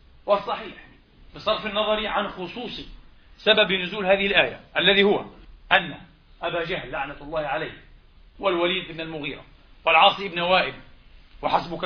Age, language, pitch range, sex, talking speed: 40-59, Arabic, 170-215 Hz, male, 120 wpm